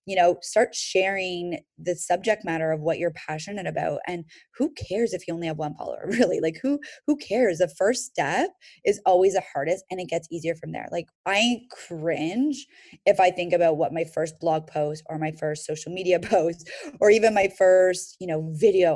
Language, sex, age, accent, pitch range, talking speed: English, female, 20-39, American, 170-215 Hz, 205 wpm